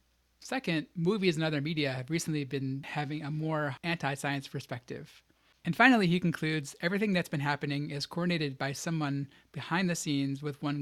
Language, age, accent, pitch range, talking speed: English, 30-49, American, 140-170 Hz, 165 wpm